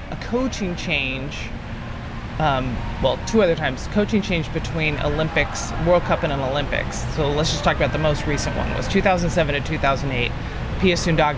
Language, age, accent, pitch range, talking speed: English, 20-39, American, 140-190 Hz, 160 wpm